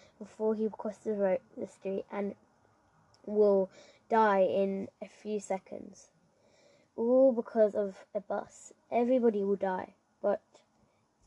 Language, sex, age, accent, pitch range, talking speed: English, female, 10-29, British, 195-230 Hz, 115 wpm